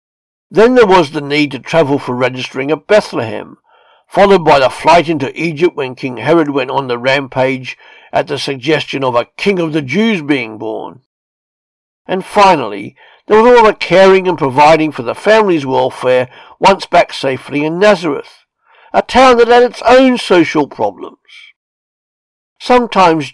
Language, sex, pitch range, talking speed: English, male, 140-210 Hz, 160 wpm